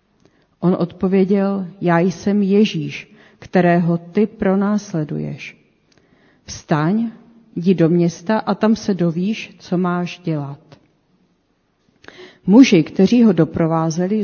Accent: native